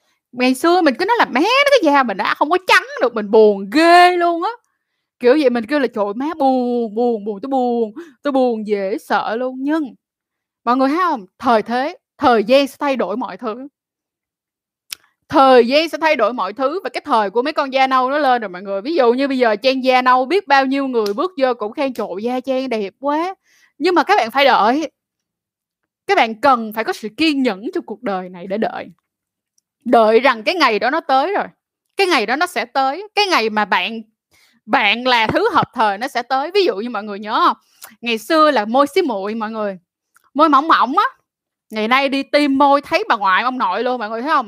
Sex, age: female, 10-29